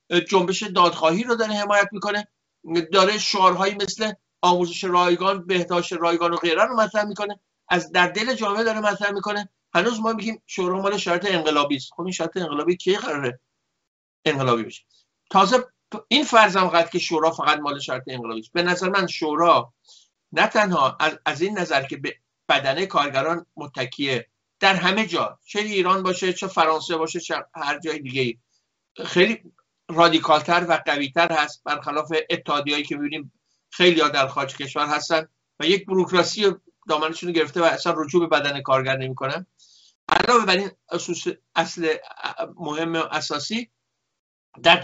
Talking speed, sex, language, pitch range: 150 wpm, male, Persian, 155-195 Hz